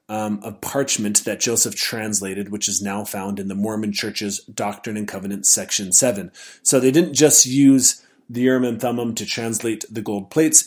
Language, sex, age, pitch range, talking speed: English, male, 30-49, 105-130 Hz, 185 wpm